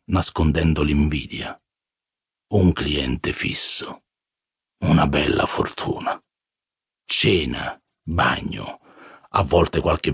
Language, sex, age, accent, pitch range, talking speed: Italian, male, 50-69, native, 90-130 Hz, 75 wpm